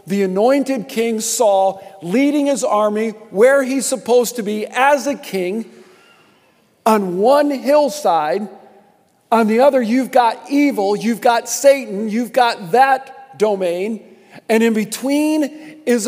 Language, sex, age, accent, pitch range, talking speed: English, male, 50-69, American, 165-230 Hz, 130 wpm